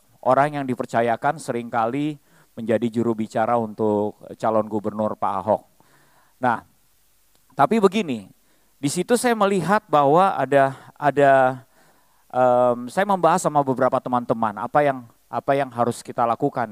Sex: male